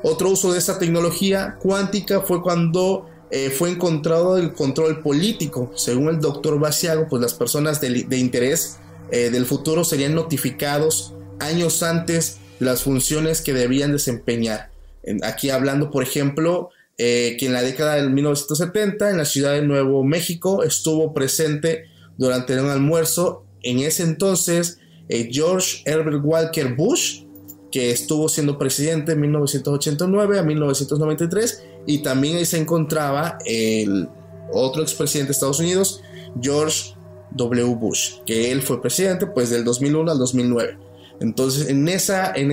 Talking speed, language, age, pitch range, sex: 145 wpm, Spanish, 30-49, 125-165 Hz, male